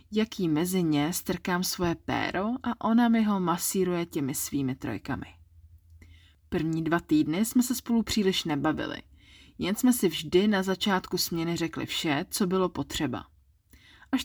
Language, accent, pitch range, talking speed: Czech, native, 145-195 Hz, 145 wpm